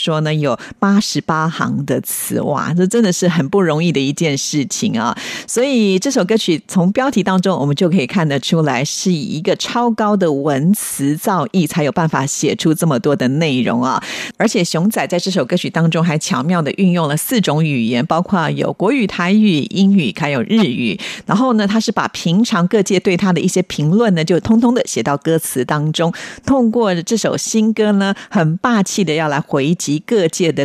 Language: Chinese